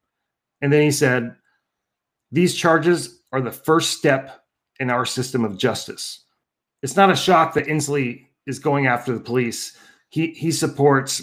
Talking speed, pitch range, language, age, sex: 155 wpm, 130-155 Hz, English, 40-59, male